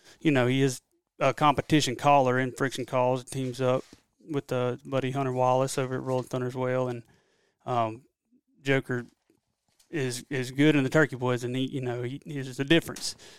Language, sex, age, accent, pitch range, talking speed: English, male, 30-49, American, 125-140 Hz, 195 wpm